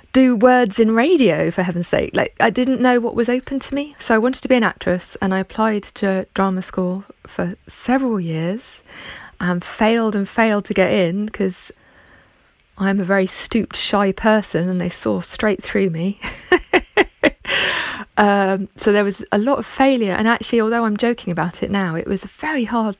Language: English